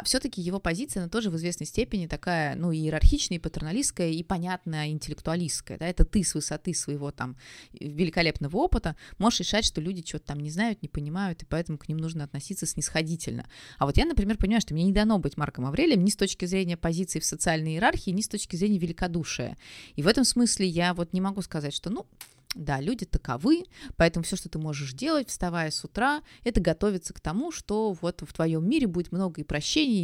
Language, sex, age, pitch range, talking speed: Russian, female, 20-39, 155-200 Hz, 205 wpm